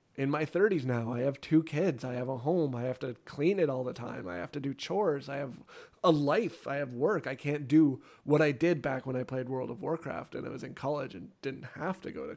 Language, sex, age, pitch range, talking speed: English, male, 30-49, 130-155 Hz, 270 wpm